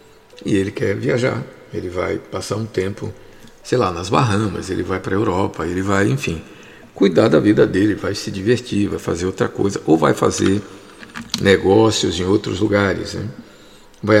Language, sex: Portuguese, male